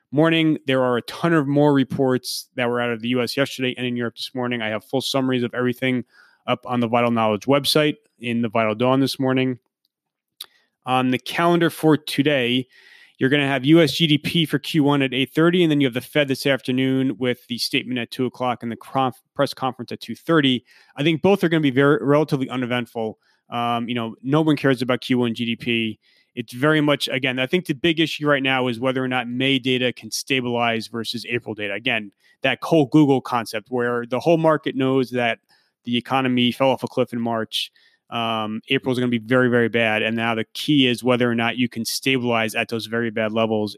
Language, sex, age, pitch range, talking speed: English, male, 30-49, 115-140 Hz, 220 wpm